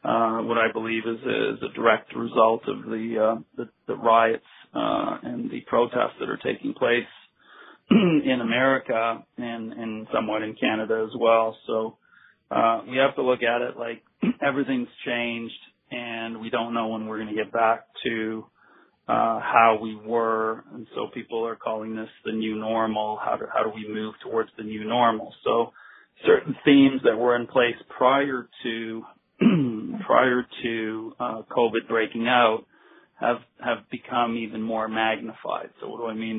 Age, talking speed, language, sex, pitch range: 40-59, 170 wpm, English, male, 110-120 Hz